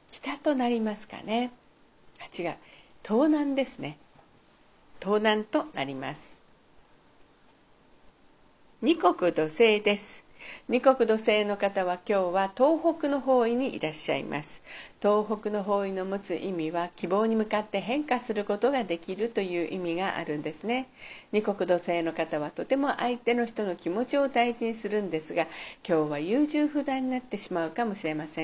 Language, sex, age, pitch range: Japanese, female, 50-69, 175-250 Hz